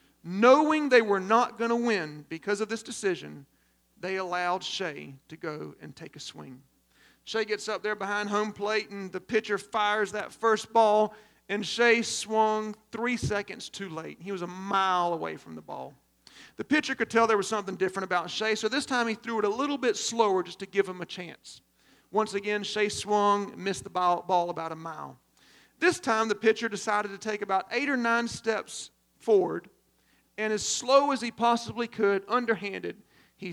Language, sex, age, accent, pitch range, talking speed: English, male, 40-59, American, 195-230 Hz, 195 wpm